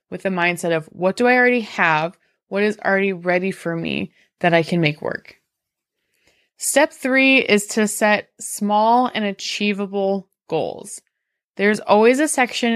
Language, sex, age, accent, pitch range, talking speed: English, female, 20-39, American, 185-240 Hz, 155 wpm